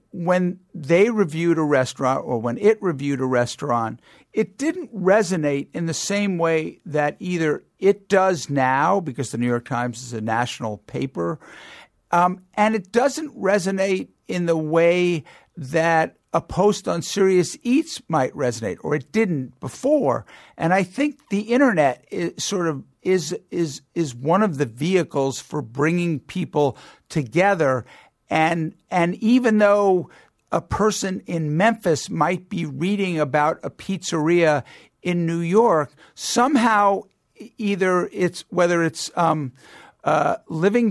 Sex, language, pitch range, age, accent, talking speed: male, English, 155-200 Hz, 50-69, American, 145 wpm